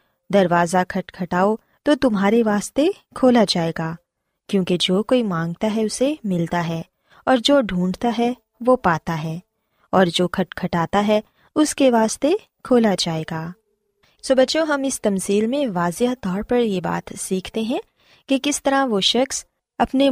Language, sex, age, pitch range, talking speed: Urdu, female, 20-39, 185-255 Hz, 85 wpm